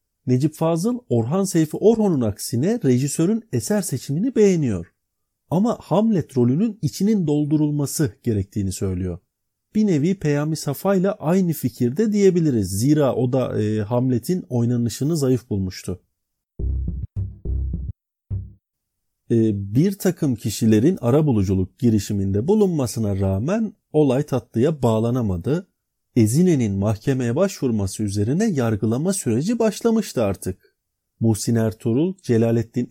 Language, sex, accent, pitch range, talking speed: Turkish, male, native, 105-170 Hz, 100 wpm